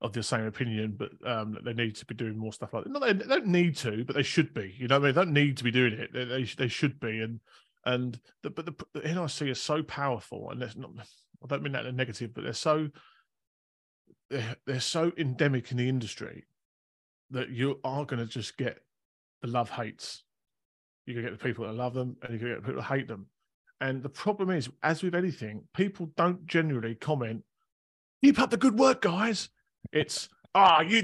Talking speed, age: 225 wpm, 30-49